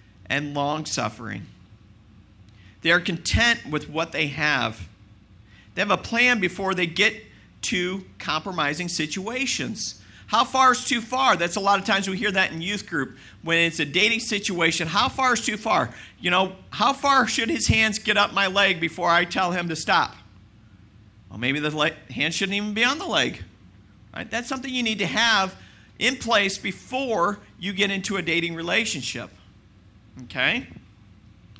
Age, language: 50-69, English